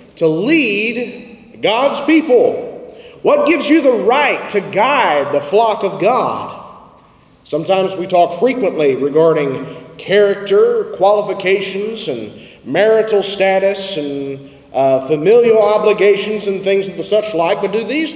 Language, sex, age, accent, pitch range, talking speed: English, male, 30-49, American, 185-255 Hz, 125 wpm